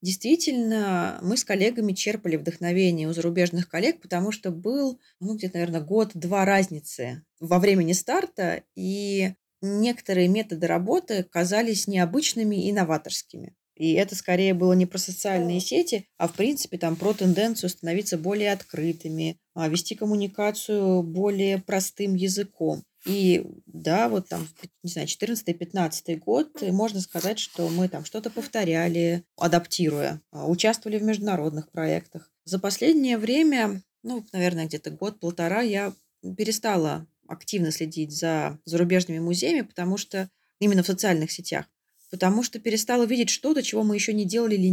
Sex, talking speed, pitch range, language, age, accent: female, 135 wpm, 170-210 Hz, Russian, 20-39, native